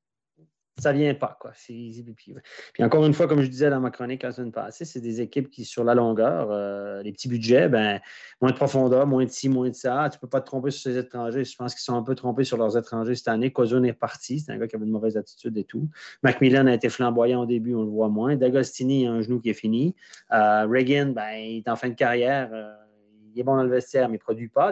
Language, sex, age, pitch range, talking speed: French, male, 30-49, 120-140 Hz, 270 wpm